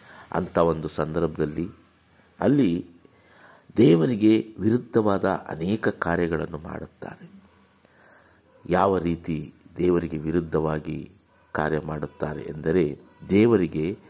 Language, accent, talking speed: Kannada, native, 70 wpm